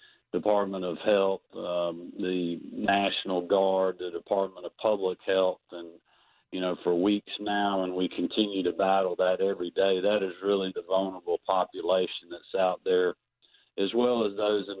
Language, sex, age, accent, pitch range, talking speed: English, male, 50-69, American, 95-110 Hz, 160 wpm